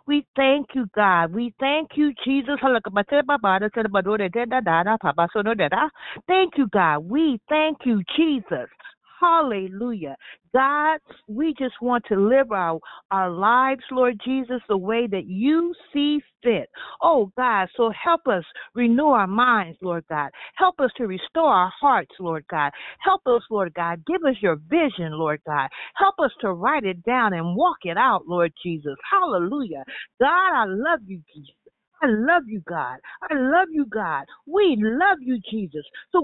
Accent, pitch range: American, 200-325 Hz